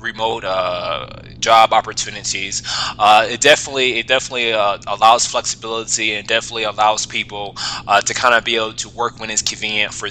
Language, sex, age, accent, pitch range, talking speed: English, male, 20-39, American, 105-130 Hz, 165 wpm